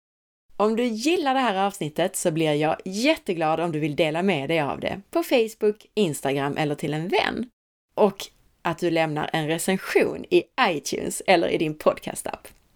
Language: Swedish